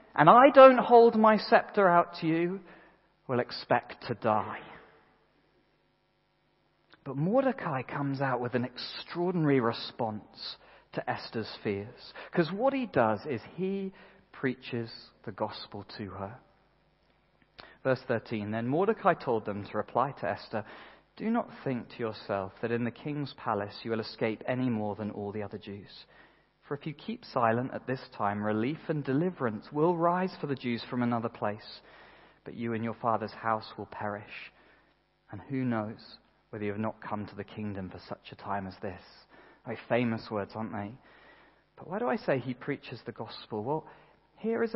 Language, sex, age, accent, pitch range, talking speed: English, male, 40-59, British, 110-170 Hz, 170 wpm